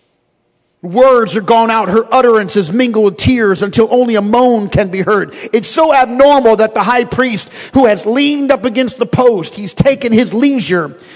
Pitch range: 235-300 Hz